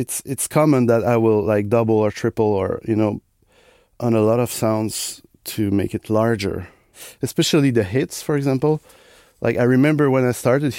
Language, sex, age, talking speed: English, male, 30-49, 185 wpm